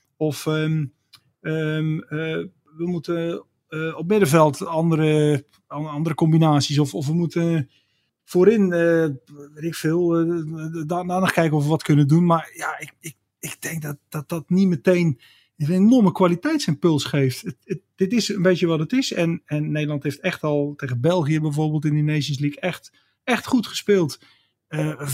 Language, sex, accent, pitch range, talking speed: Dutch, male, Dutch, 150-185 Hz, 160 wpm